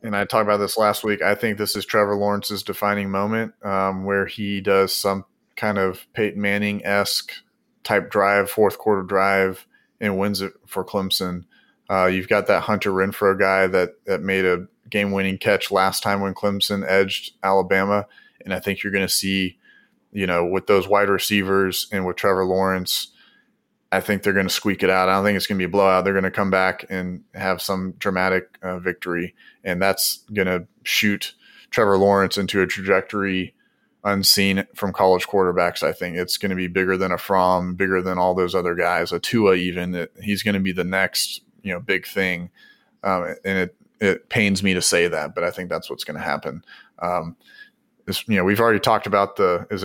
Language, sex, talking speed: English, male, 205 wpm